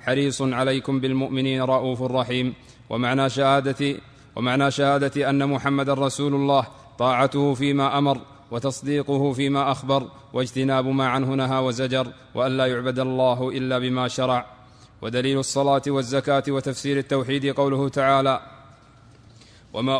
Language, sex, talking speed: Arabic, male, 110 wpm